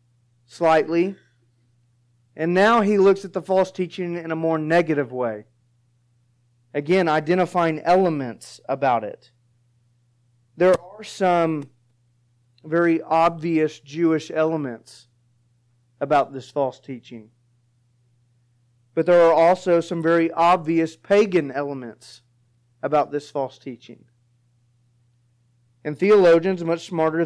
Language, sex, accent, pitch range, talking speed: English, male, American, 120-165 Hz, 105 wpm